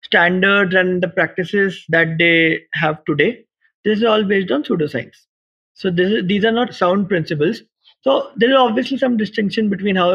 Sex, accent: male, Indian